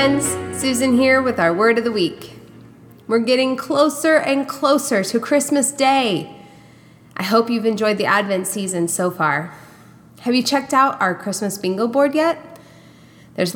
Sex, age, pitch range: female, 20-39, 175-235 Hz